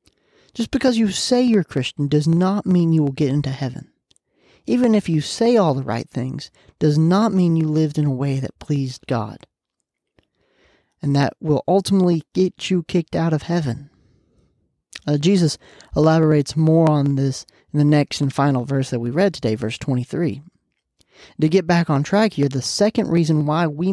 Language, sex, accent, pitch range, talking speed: English, male, American, 140-185 Hz, 180 wpm